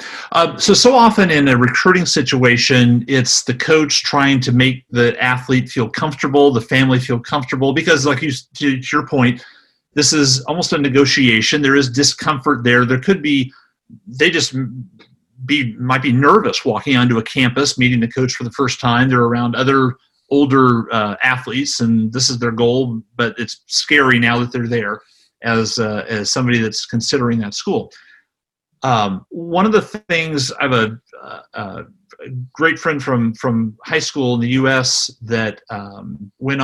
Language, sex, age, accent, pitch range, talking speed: English, male, 40-59, American, 120-145 Hz, 170 wpm